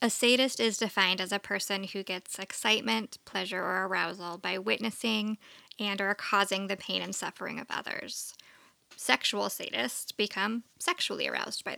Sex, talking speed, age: female, 155 wpm, 10-29